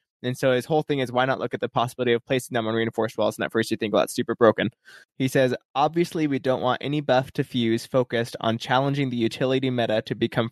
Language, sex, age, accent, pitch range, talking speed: English, male, 20-39, American, 115-135 Hz, 255 wpm